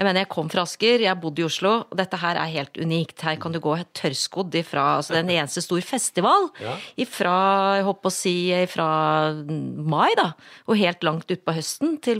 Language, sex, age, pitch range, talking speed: English, female, 30-49, 165-220 Hz, 205 wpm